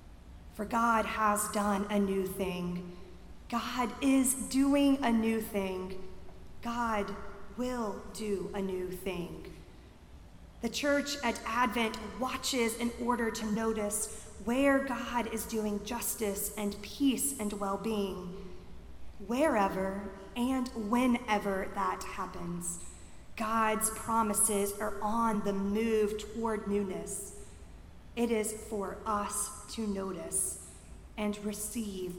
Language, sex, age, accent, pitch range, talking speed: English, female, 30-49, American, 190-225 Hz, 110 wpm